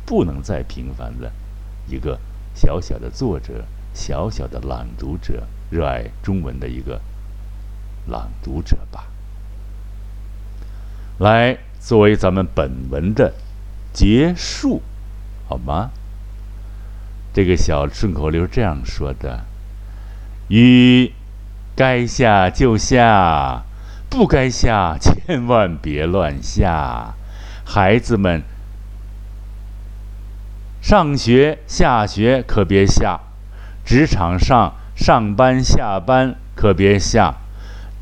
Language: Chinese